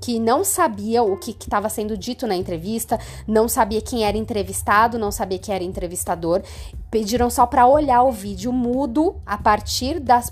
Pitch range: 185-245 Hz